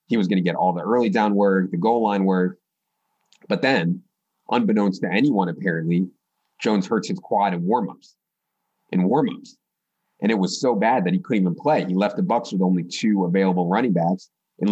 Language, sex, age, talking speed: English, male, 30-49, 200 wpm